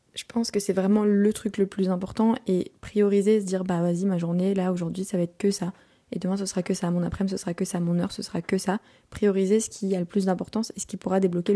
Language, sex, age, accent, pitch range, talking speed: French, female, 20-39, French, 170-195 Hz, 290 wpm